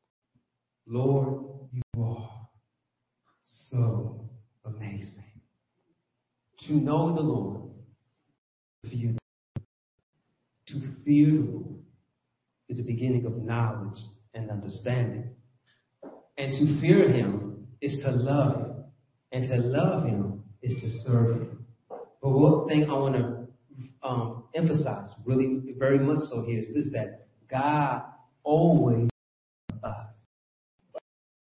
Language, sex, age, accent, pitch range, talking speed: English, male, 40-59, American, 115-165 Hz, 110 wpm